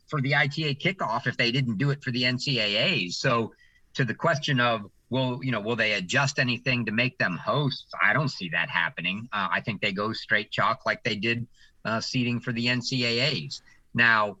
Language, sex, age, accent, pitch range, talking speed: English, male, 50-69, American, 115-145 Hz, 205 wpm